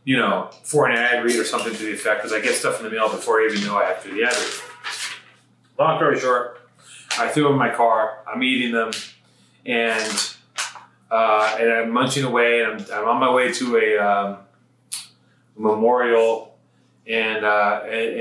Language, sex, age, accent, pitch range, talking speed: English, male, 30-49, American, 105-125 Hz, 195 wpm